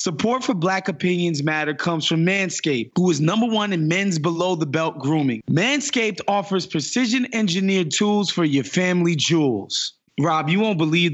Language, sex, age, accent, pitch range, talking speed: English, male, 20-39, American, 155-215 Hz, 165 wpm